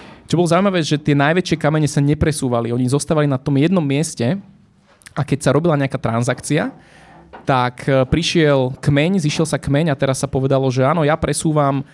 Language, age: Slovak, 20-39